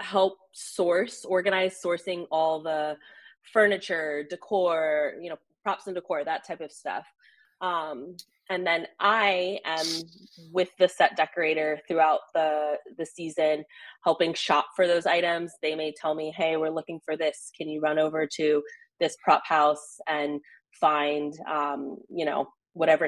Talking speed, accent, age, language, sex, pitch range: 150 wpm, American, 20-39, English, female, 155-190 Hz